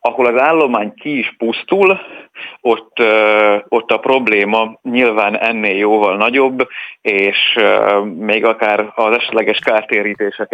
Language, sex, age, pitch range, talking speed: Hungarian, male, 30-49, 105-120 Hz, 115 wpm